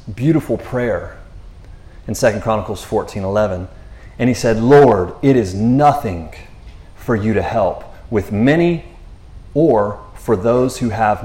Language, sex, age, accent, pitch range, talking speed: English, male, 30-49, American, 90-120 Hz, 130 wpm